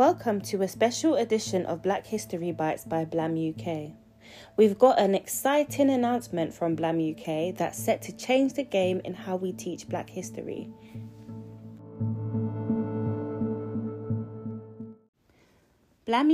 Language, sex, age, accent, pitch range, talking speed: English, female, 30-49, British, 165-220 Hz, 120 wpm